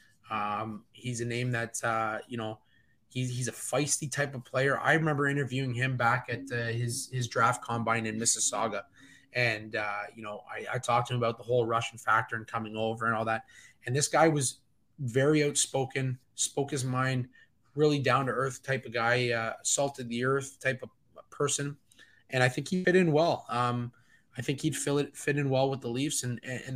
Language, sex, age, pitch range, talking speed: English, male, 20-39, 115-135 Hz, 205 wpm